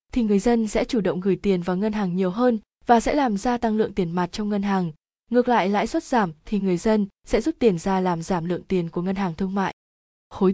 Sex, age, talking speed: female, 20-39, 260 wpm